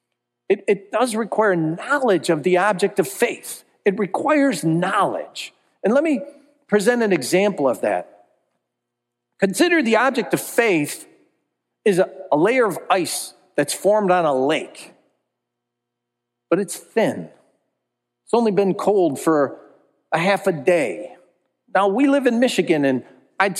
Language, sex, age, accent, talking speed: English, male, 40-59, American, 140 wpm